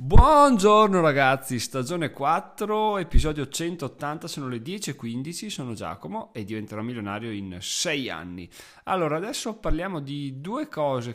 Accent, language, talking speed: native, Italian, 125 wpm